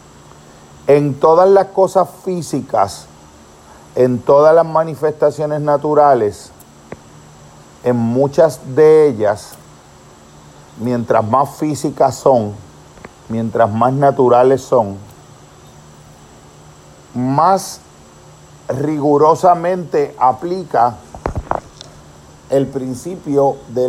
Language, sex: Spanish, male